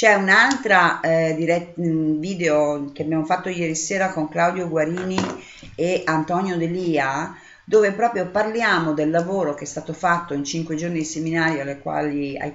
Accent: native